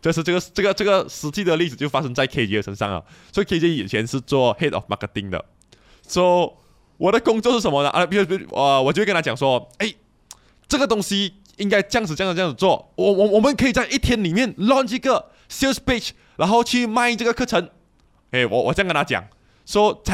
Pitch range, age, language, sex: 150-235 Hz, 20-39, Chinese, male